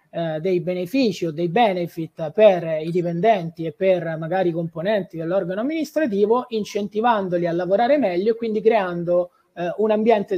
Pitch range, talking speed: 175-255 Hz, 150 wpm